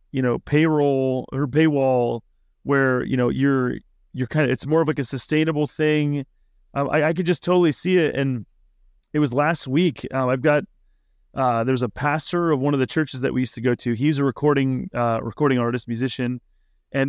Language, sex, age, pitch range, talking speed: English, male, 30-49, 120-150 Hz, 205 wpm